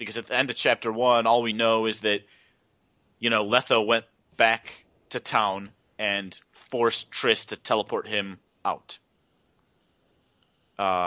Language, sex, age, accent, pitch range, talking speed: English, male, 30-49, American, 100-120 Hz, 145 wpm